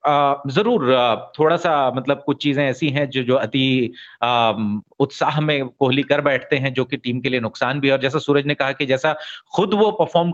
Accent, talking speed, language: native, 205 wpm, Hindi